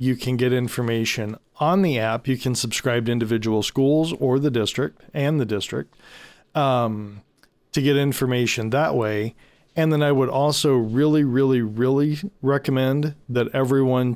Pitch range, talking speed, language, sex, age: 115-140 Hz, 155 wpm, English, male, 40-59